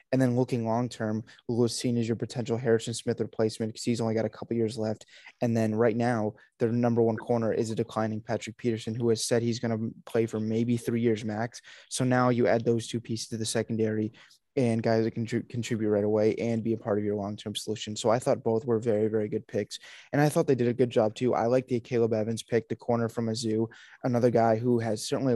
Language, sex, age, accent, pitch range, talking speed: English, male, 20-39, American, 110-120 Hz, 245 wpm